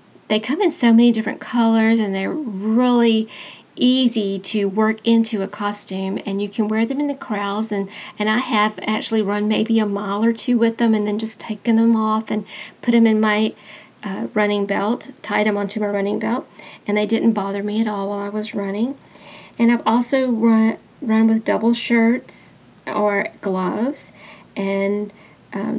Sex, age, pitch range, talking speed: female, 40-59, 205-230 Hz, 185 wpm